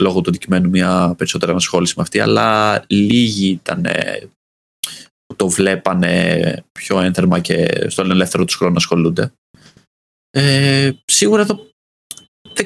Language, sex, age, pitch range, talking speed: Greek, male, 20-39, 95-135 Hz, 125 wpm